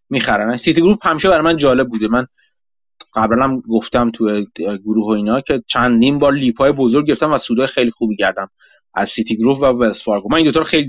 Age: 30-49